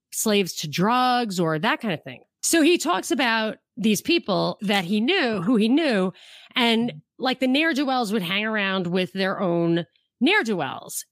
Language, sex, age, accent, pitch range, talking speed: English, female, 30-49, American, 185-245 Hz, 165 wpm